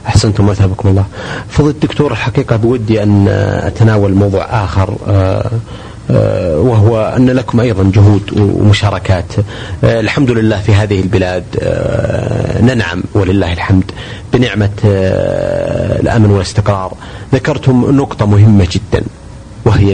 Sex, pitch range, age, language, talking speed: male, 100-120 Hz, 40-59, Arabic, 95 wpm